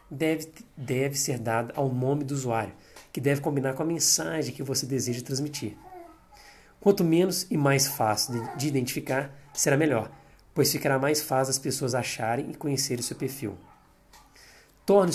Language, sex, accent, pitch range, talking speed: Portuguese, male, Brazilian, 130-155 Hz, 160 wpm